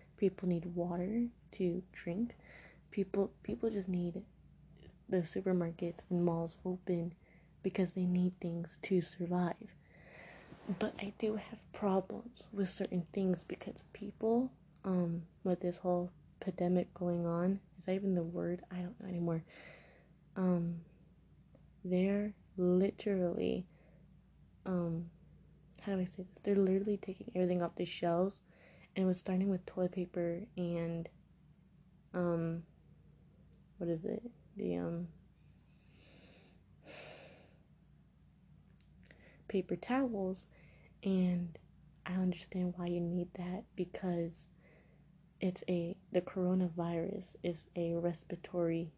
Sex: female